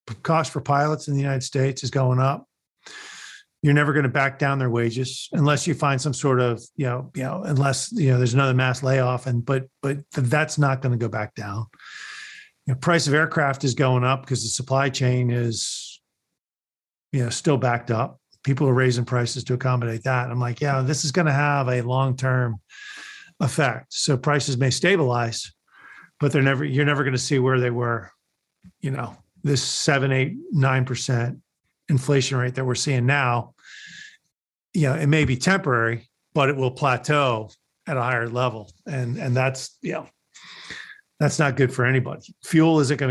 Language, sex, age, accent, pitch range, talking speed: English, male, 40-59, American, 125-145 Hz, 190 wpm